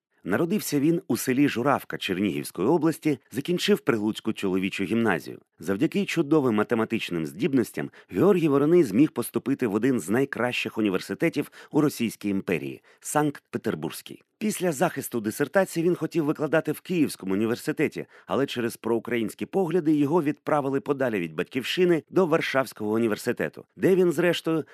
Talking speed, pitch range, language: 130 wpm, 110-165 Hz, Ukrainian